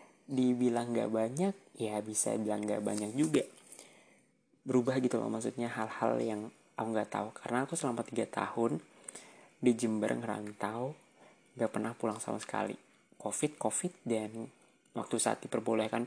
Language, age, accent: Indonesian, 20-39, native